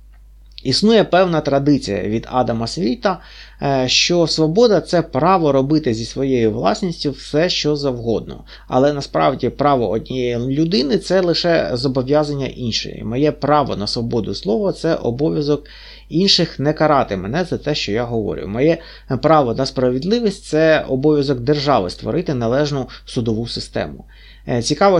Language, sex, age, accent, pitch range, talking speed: Russian, male, 30-49, native, 125-160 Hz, 135 wpm